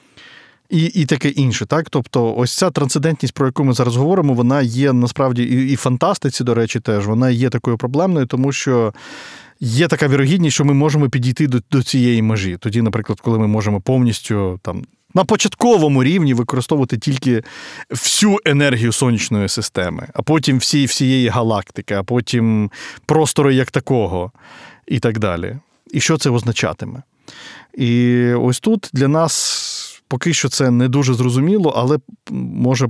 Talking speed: 155 wpm